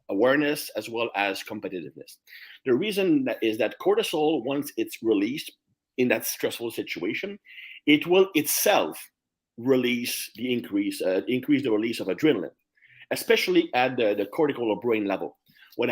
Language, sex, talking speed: English, male, 145 wpm